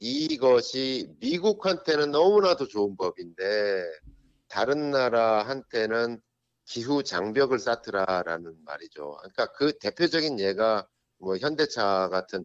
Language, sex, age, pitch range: Korean, male, 50-69, 90-145 Hz